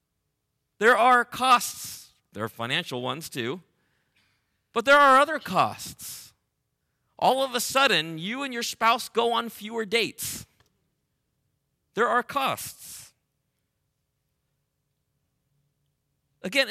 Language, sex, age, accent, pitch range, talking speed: English, male, 40-59, American, 140-225 Hz, 105 wpm